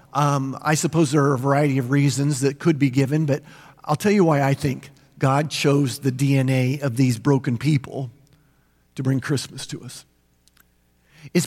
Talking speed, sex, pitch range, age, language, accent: 180 wpm, male, 140-215 Hz, 50-69, English, American